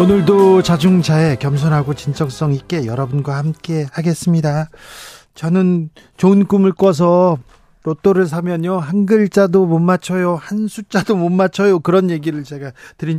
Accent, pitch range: native, 145-190 Hz